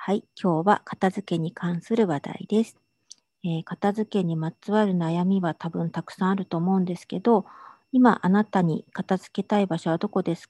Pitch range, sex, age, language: 175-215 Hz, female, 50-69, Japanese